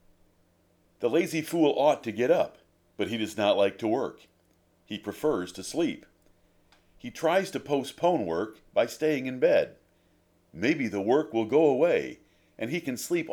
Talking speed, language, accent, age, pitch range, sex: 165 wpm, English, American, 50-69, 90-135 Hz, male